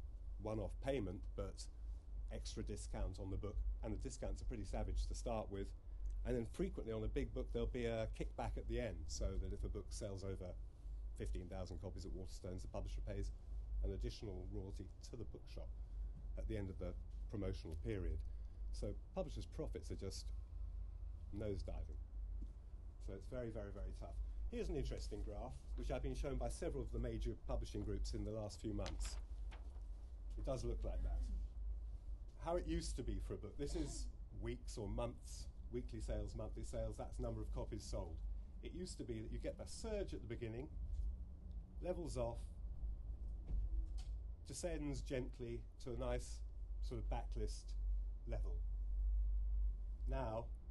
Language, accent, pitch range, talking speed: English, British, 75-110 Hz, 165 wpm